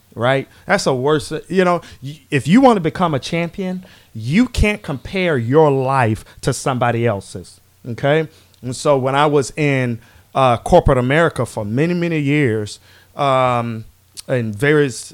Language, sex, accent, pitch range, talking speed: English, male, American, 115-150 Hz, 150 wpm